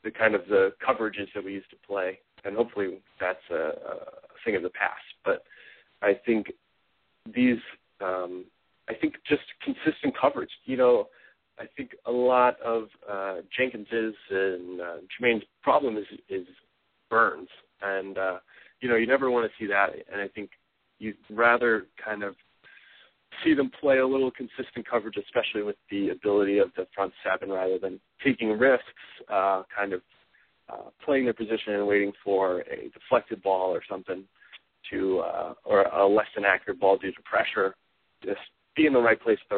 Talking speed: 175 wpm